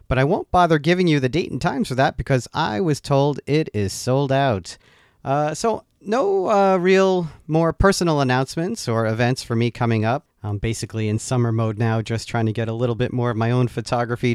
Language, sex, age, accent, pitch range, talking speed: English, male, 40-59, American, 115-155 Hz, 220 wpm